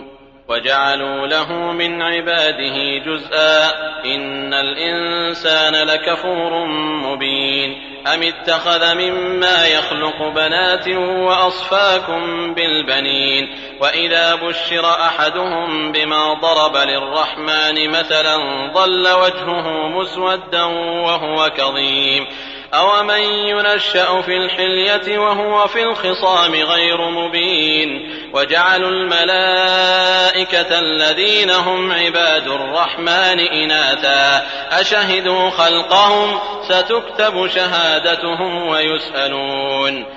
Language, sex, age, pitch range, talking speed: Arabic, male, 30-49, 155-185 Hz, 75 wpm